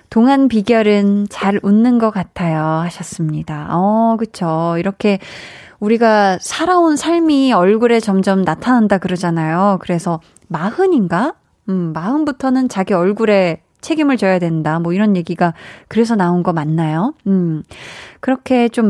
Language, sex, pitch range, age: Korean, female, 180-240 Hz, 20-39